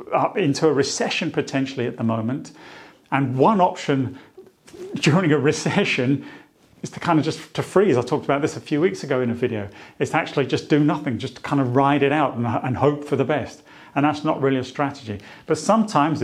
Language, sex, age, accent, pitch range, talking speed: English, male, 40-59, British, 125-150 Hz, 210 wpm